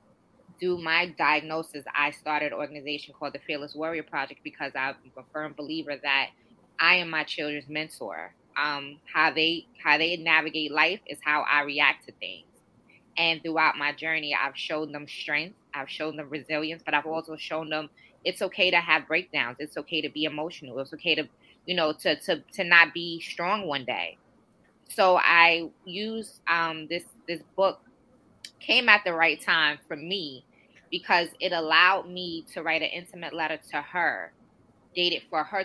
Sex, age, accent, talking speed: female, 20-39, American, 175 wpm